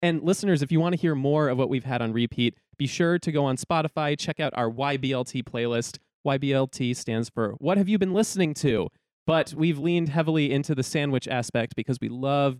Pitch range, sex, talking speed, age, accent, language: 125-160 Hz, male, 215 wpm, 20-39, American, English